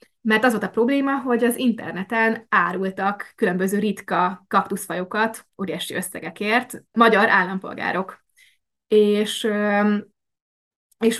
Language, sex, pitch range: Hungarian, female, 195-230 Hz